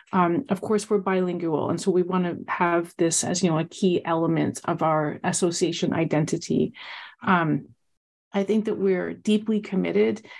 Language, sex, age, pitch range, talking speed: English, female, 30-49, 165-195 Hz, 165 wpm